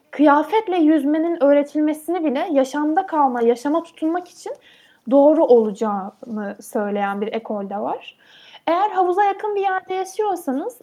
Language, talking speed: Turkish, 115 wpm